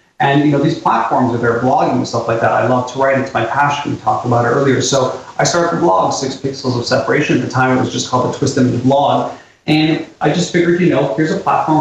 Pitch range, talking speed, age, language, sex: 130-150 Hz, 270 wpm, 30-49, English, male